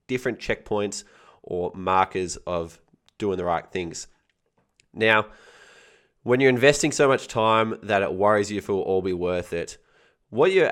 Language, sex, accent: English, male, Australian